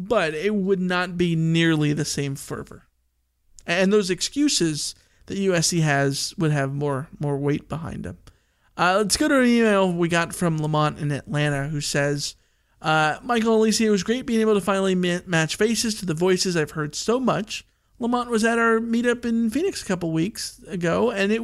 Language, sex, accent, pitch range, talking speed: English, male, American, 155-205 Hz, 190 wpm